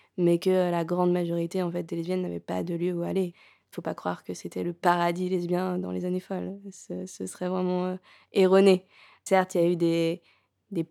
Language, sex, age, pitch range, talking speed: French, female, 20-39, 175-195 Hz, 225 wpm